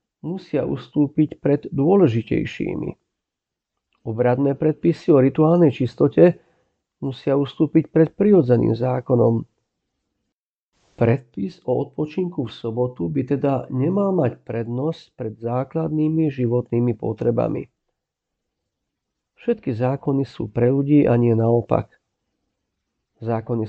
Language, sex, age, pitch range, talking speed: Slovak, male, 50-69, 120-155 Hz, 95 wpm